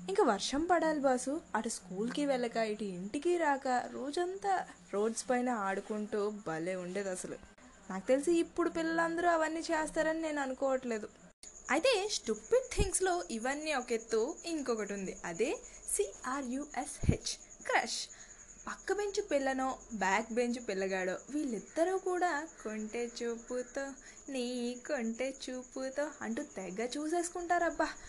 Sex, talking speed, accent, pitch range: female, 115 wpm, native, 220-325 Hz